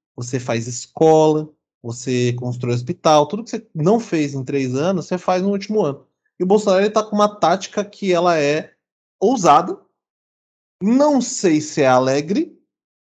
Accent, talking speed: Brazilian, 160 wpm